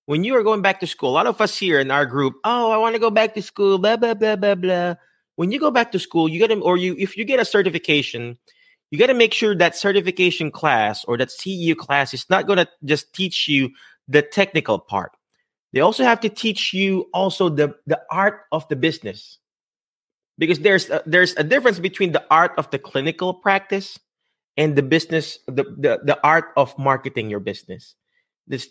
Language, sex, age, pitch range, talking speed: English, male, 30-49, 140-200 Hz, 215 wpm